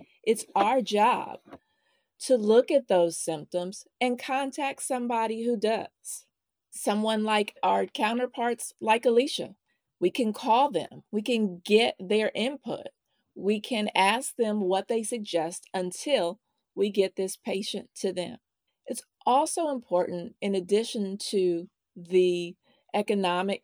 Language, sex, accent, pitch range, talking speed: English, female, American, 185-235 Hz, 125 wpm